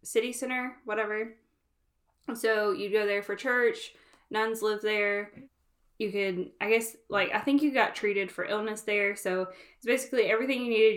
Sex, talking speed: female, 170 wpm